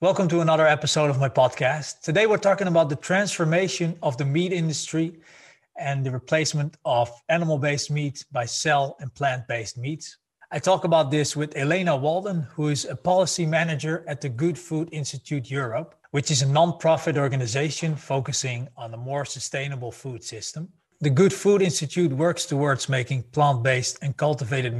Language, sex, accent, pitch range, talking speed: English, male, Dutch, 135-160 Hz, 165 wpm